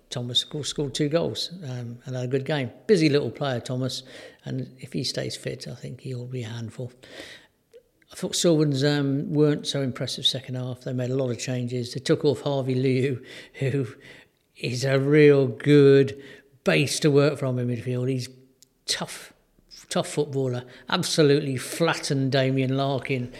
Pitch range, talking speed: 130-150 Hz, 165 wpm